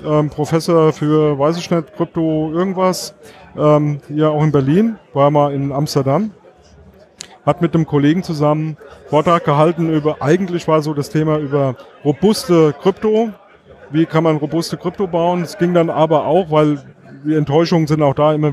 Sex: male